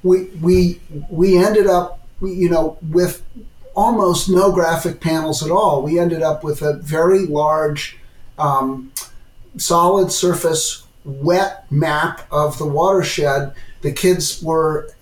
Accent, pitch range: American, 150-180 Hz